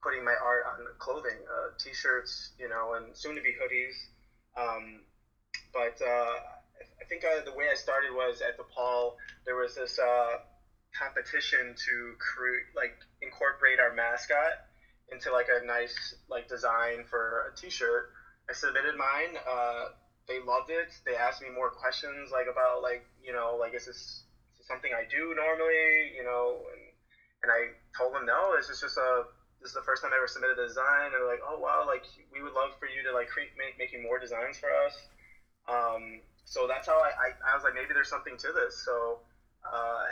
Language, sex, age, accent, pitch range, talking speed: English, male, 20-39, American, 115-155 Hz, 195 wpm